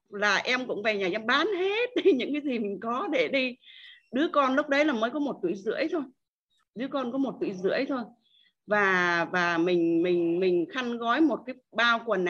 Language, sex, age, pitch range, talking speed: Vietnamese, female, 20-39, 195-260 Hz, 215 wpm